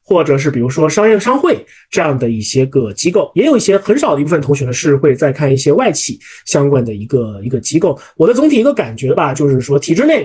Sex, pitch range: male, 135-195 Hz